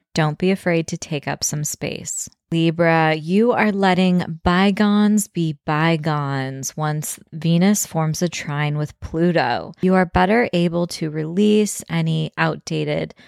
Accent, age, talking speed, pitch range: American, 20-39, 135 wpm, 155-190 Hz